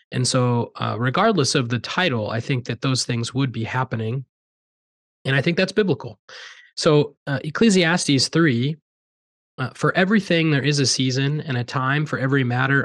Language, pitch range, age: English, 125-145 Hz, 20-39